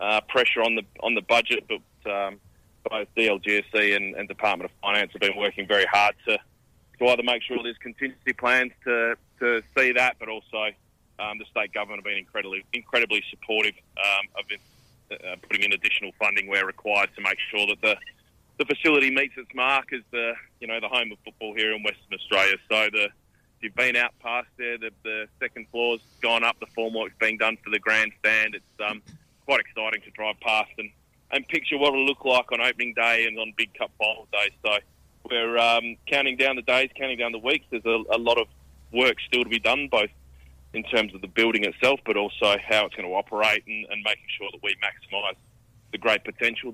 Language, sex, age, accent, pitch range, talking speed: English, male, 20-39, Australian, 105-120 Hz, 220 wpm